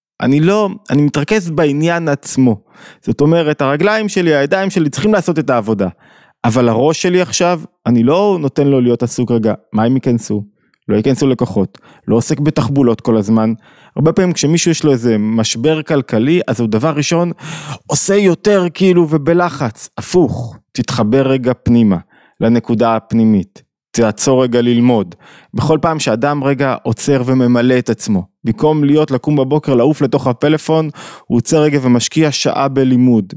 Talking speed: 150 wpm